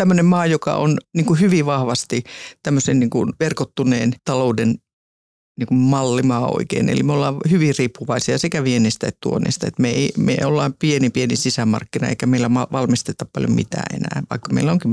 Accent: native